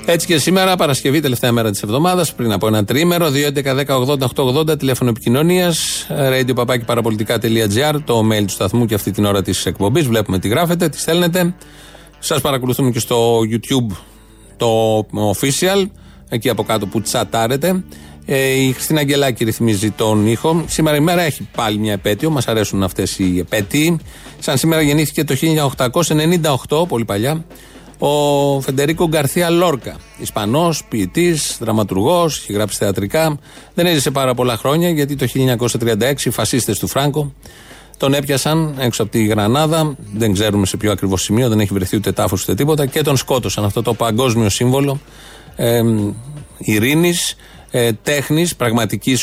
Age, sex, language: 30-49, male, Greek